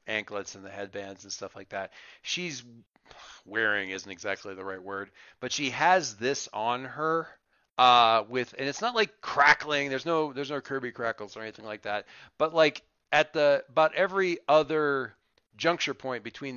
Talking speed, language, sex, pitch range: 175 wpm, English, male, 115-155 Hz